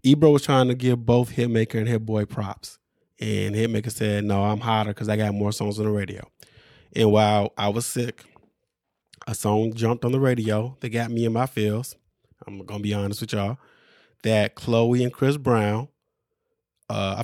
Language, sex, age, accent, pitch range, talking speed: English, male, 20-39, American, 115-165 Hz, 190 wpm